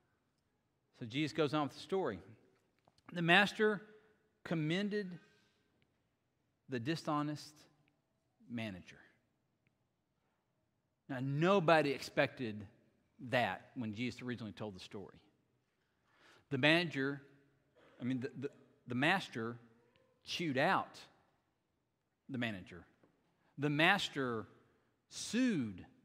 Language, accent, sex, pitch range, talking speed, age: English, American, male, 125-175 Hz, 90 wpm, 50-69